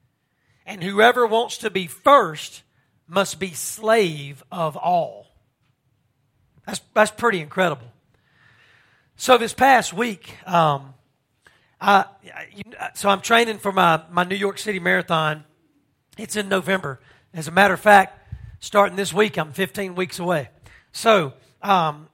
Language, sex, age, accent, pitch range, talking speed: English, male, 40-59, American, 155-210 Hz, 135 wpm